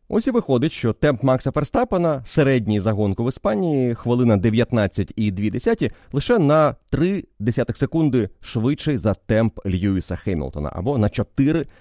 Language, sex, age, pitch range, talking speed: Ukrainian, male, 30-49, 90-125 Hz, 125 wpm